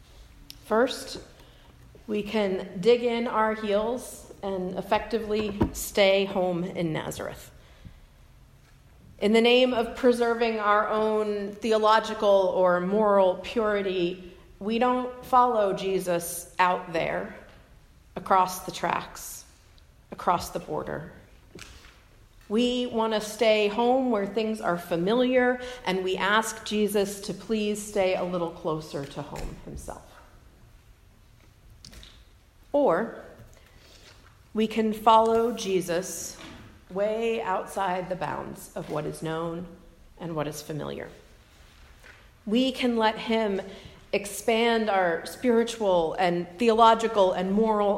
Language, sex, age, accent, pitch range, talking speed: English, female, 40-59, American, 185-220 Hz, 110 wpm